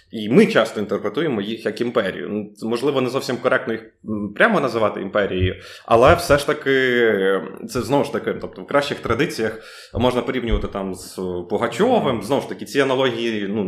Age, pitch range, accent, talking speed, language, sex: 20-39, 110-145 Hz, native, 165 wpm, Ukrainian, male